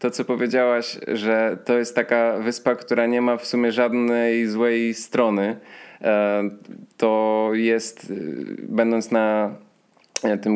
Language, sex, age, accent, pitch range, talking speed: Polish, male, 20-39, native, 115-125 Hz, 120 wpm